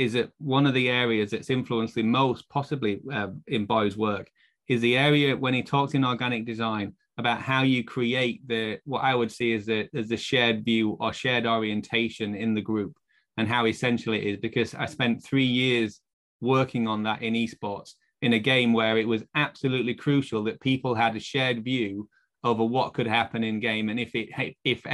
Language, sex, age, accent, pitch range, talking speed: English, male, 20-39, British, 110-125 Hz, 200 wpm